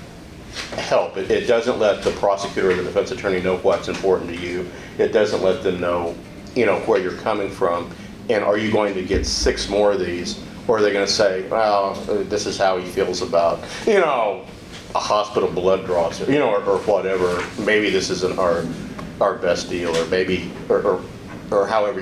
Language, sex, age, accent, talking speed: English, male, 50-69, American, 200 wpm